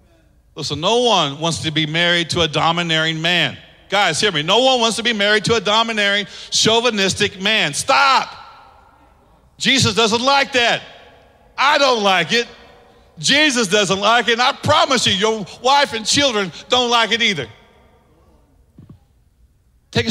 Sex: male